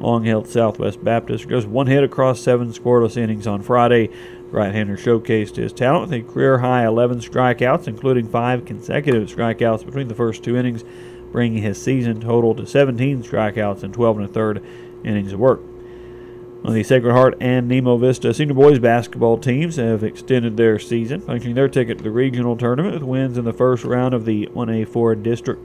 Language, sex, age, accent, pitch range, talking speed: English, male, 40-59, American, 115-125 Hz, 175 wpm